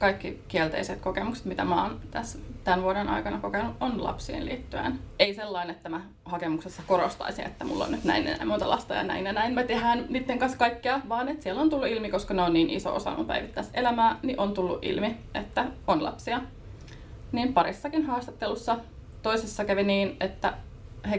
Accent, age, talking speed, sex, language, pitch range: native, 20-39, 190 wpm, female, Finnish, 195-270 Hz